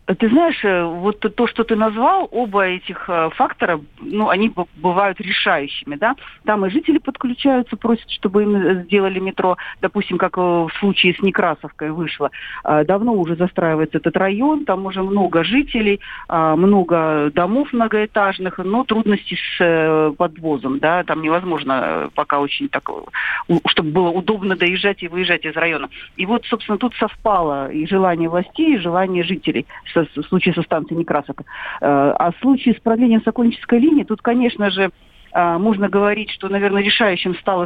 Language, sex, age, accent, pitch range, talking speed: Russian, female, 50-69, native, 165-215 Hz, 150 wpm